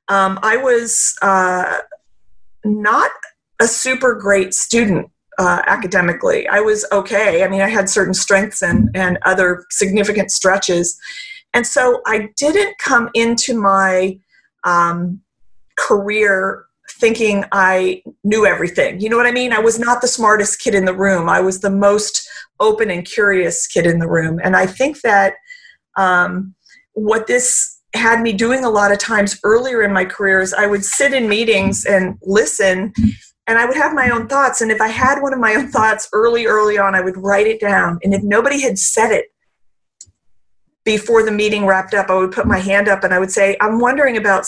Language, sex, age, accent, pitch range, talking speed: English, female, 40-59, American, 190-235 Hz, 185 wpm